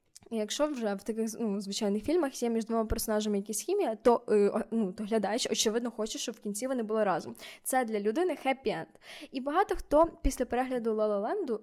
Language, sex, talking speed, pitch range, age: Ukrainian, female, 190 wpm, 215-265 Hz, 10-29